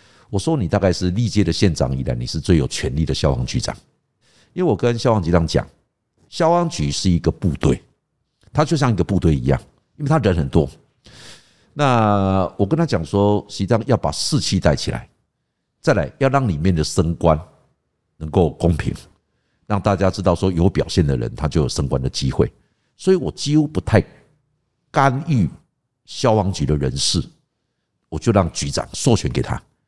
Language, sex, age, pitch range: English, male, 60-79, 80-115 Hz